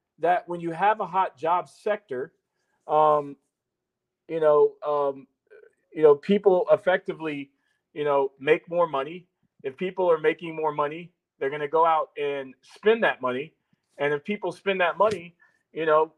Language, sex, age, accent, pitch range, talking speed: English, male, 40-59, American, 150-200 Hz, 165 wpm